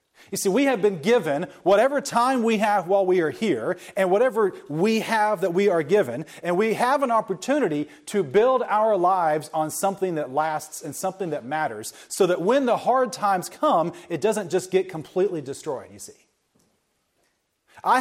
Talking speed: 185 wpm